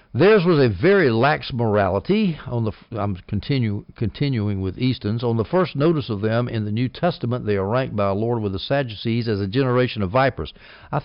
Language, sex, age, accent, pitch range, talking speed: English, male, 60-79, American, 105-135 Hz, 205 wpm